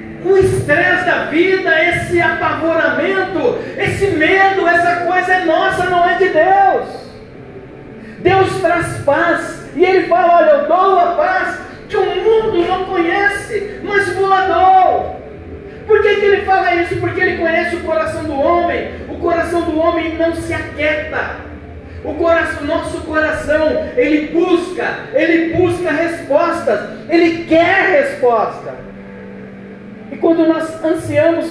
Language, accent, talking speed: Portuguese, Brazilian, 135 wpm